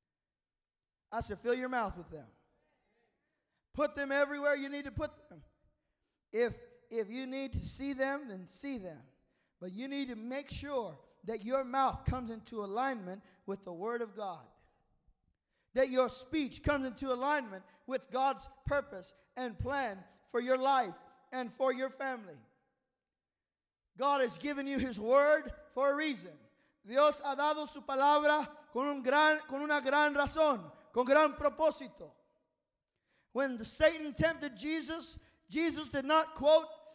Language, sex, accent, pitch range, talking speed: English, male, American, 255-310 Hz, 145 wpm